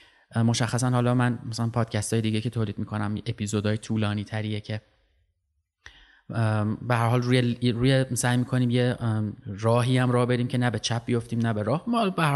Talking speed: 180 wpm